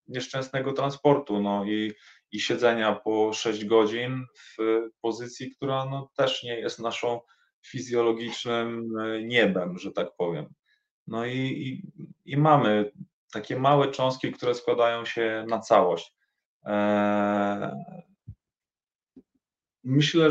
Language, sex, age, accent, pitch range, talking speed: Polish, male, 20-39, native, 115-135 Hz, 105 wpm